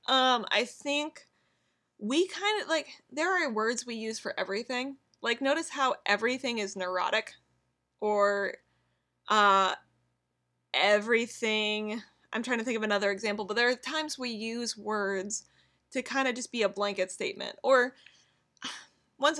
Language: English